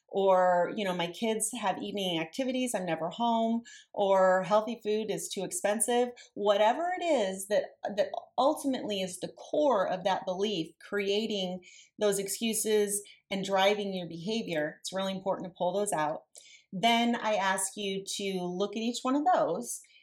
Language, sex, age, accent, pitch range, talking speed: English, female, 30-49, American, 185-215 Hz, 160 wpm